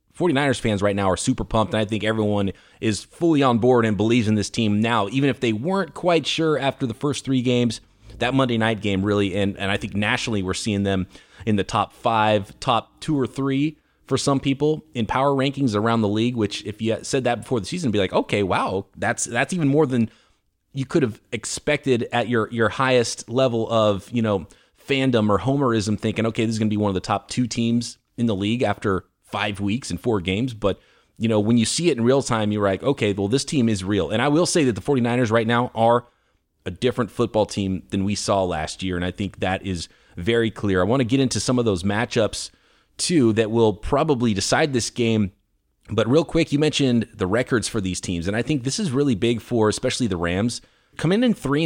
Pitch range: 105-135 Hz